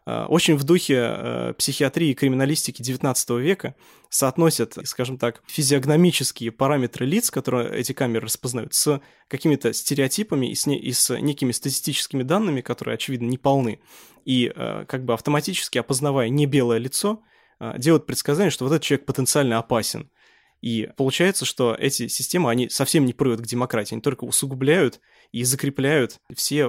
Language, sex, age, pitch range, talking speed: Russian, male, 20-39, 120-145 Hz, 155 wpm